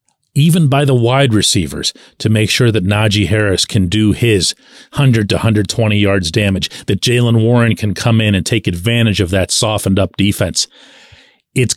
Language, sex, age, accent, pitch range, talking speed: English, male, 40-59, American, 105-145 Hz, 175 wpm